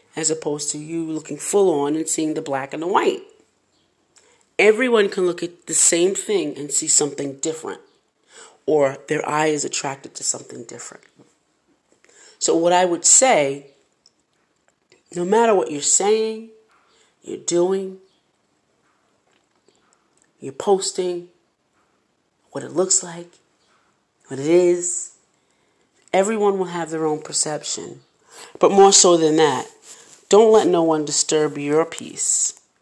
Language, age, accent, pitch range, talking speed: English, 40-59, American, 155-230 Hz, 130 wpm